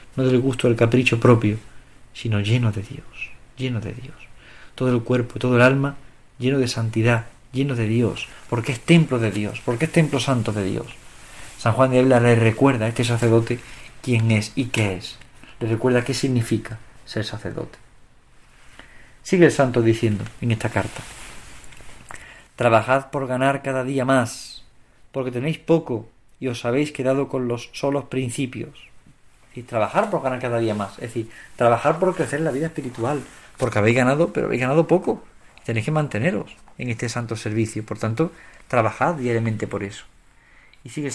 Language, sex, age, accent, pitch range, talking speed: Spanish, male, 40-59, Spanish, 115-140 Hz, 175 wpm